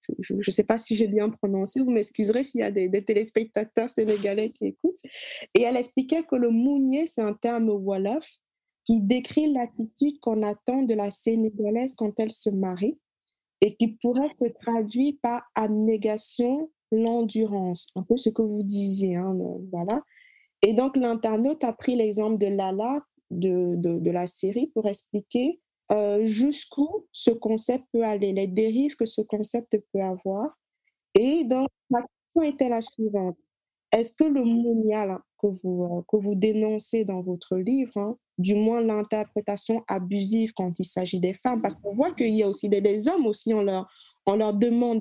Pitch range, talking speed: 205-245 Hz, 175 wpm